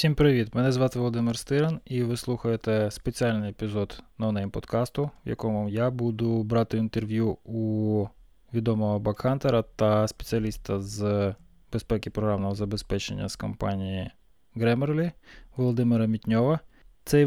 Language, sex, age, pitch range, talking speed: Ukrainian, male, 20-39, 105-120 Hz, 120 wpm